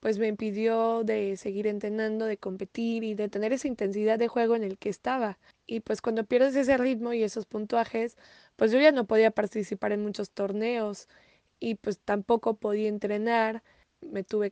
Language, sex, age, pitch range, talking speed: Spanish, female, 20-39, 205-230 Hz, 180 wpm